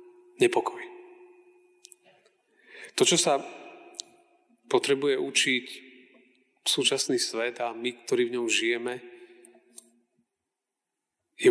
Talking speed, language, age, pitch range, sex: 85 wpm, Slovak, 40-59, 330-375 Hz, male